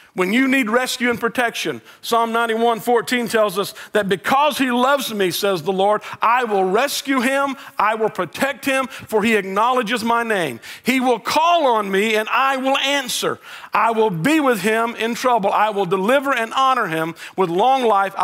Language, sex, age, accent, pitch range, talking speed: English, male, 50-69, American, 195-245 Hz, 185 wpm